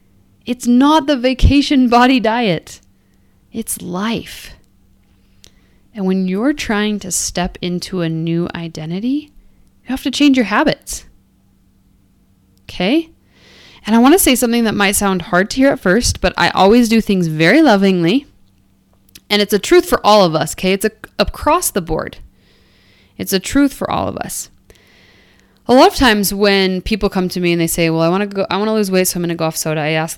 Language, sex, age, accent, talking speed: English, female, 20-39, American, 195 wpm